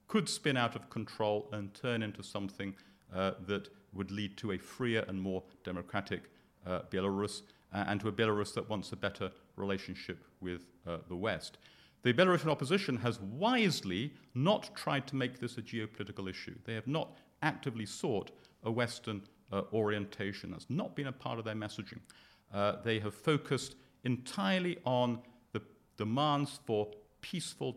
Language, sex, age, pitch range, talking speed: English, male, 50-69, 100-125 Hz, 160 wpm